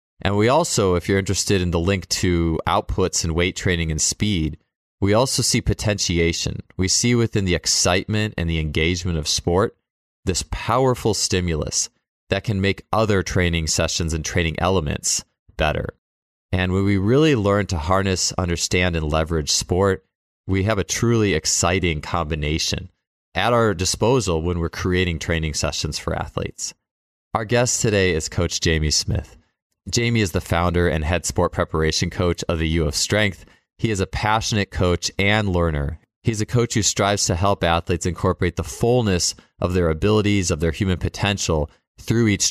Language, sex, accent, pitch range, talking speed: English, male, American, 85-100 Hz, 165 wpm